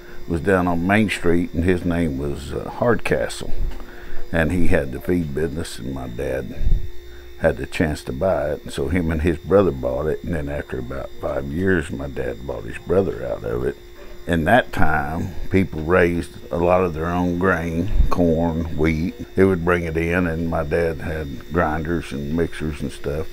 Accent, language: American, English